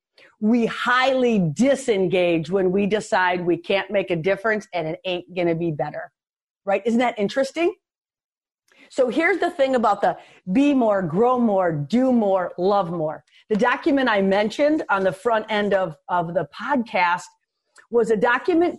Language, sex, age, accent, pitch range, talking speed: English, female, 40-59, American, 195-270 Hz, 165 wpm